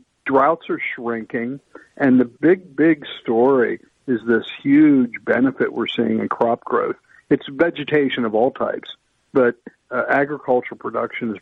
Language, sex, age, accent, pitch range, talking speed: English, male, 50-69, American, 115-140 Hz, 140 wpm